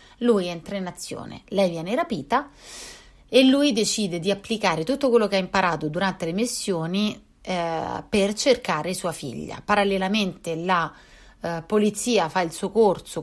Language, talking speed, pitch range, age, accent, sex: Italian, 150 wpm, 175-220 Hz, 30-49, native, female